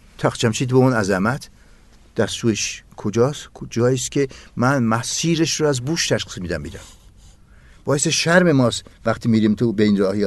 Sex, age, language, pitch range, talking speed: male, 60-79, Persian, 95-125 Hz, 150 wpm